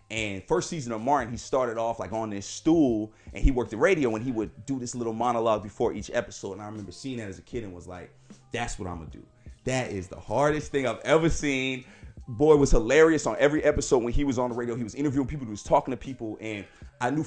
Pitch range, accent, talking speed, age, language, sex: 105-135 Hz, American, 270 wpm, 30-49, English, male